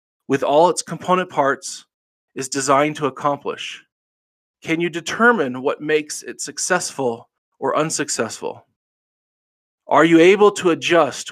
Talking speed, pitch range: 120 wpm, 130-170 Hz